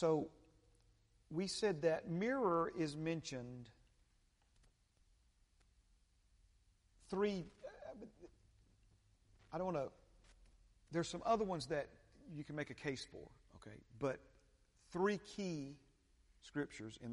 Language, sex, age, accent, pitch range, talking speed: English, male, 50-69, American, 100-155 Hz, 100 wpm